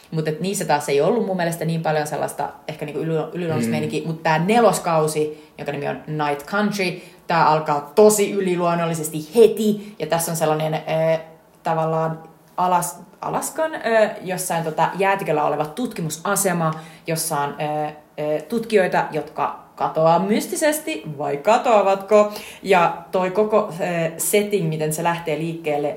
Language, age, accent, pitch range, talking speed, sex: Finnish, 30-49, native, 155-200 Hz, 135 wpm, female